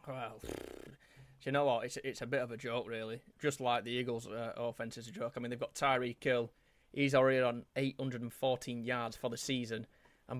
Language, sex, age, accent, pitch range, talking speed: English, male, 20-39, British, 125-145 Hz, 215 wpm